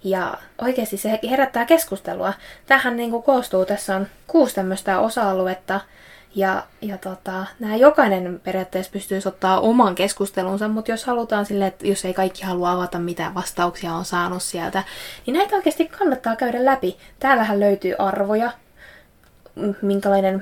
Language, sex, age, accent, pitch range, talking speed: Finnish, female, 20-39, native, 190-215 Hz, 140 wpm